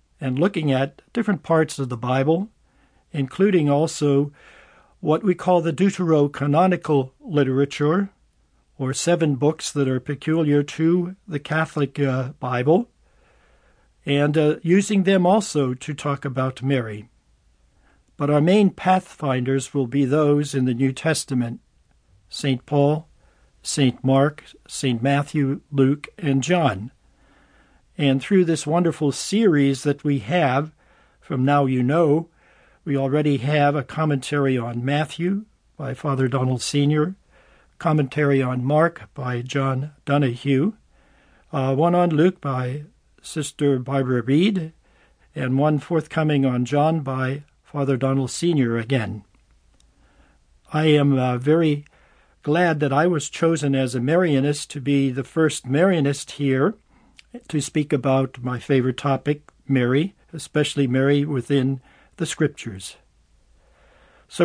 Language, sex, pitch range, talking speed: English, male, 135-160 Hz, 125 wpm